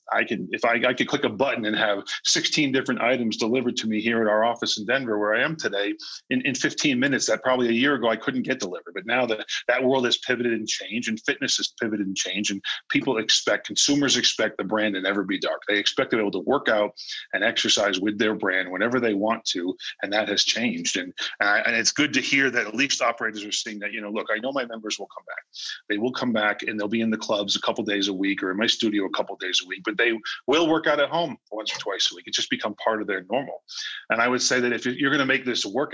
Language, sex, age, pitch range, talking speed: English, male, 40-59, 105-135 Hz, 280 wpm